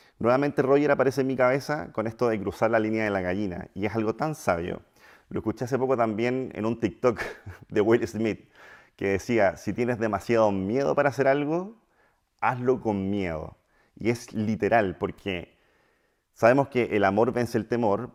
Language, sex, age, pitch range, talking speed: Spanish, male, 30-49, 100-130 Hz, 180 wpm